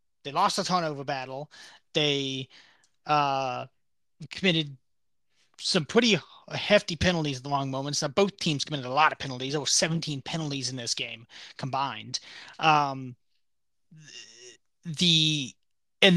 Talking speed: 135 wpm